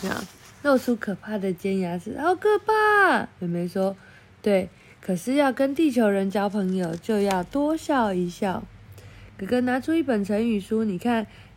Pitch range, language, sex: 190-285 Hz, Chinese, female